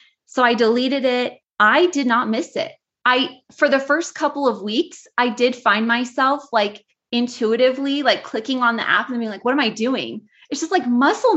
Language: English